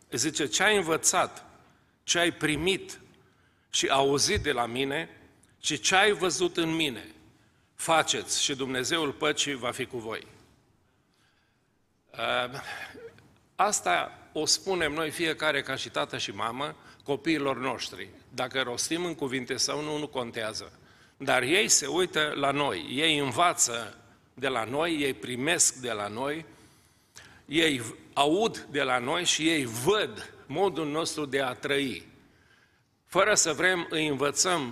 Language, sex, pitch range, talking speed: Romanian, male, 135-165 Hz, 140 wpm